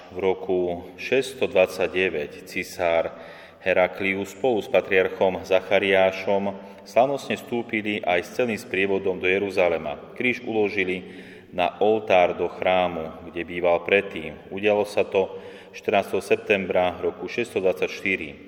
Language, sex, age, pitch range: Slovak, male, 30-49, 90-100 Hz